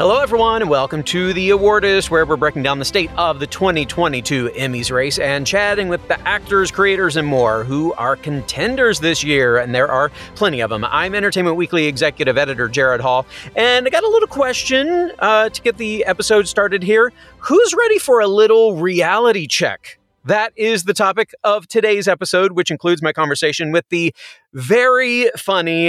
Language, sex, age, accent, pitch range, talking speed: English, male, 30-49, American, 145-200 Hz, 185 wpm